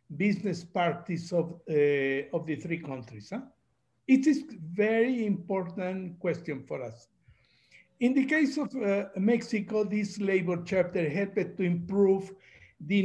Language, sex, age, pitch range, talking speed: English, male, 60-79, 170-215 Hz, 135 wpm